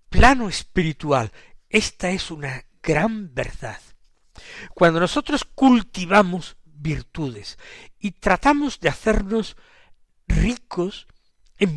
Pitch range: 140-190 Hz